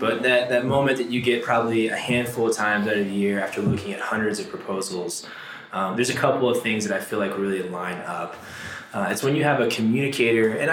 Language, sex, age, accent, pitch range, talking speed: English, male, 20-39, American, 105-130 Hz, 240 wpm